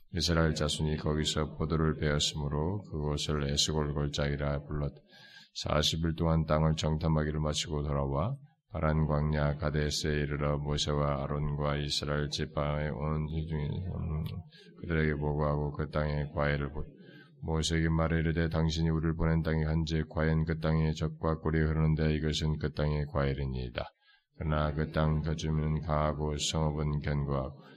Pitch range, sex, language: 75-80 Hz, male, Korean